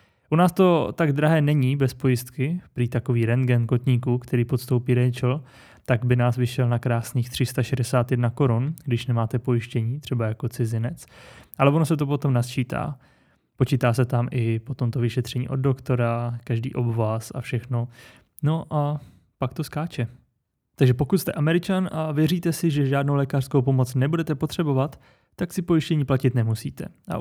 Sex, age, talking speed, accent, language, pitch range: male, 20-39, 160 wpm, native, Czech, 120-140 Hz